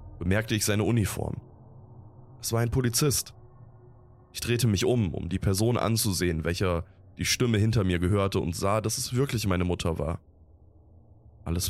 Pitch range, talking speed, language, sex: 90-120 Hz, 160 wpm, German, male